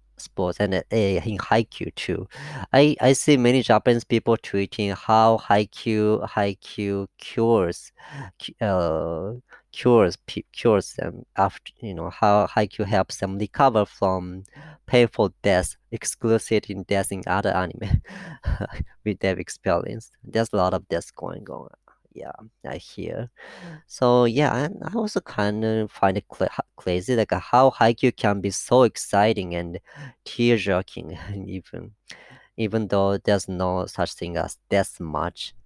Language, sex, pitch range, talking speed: English, female, 95-120 Hz, 140 wpm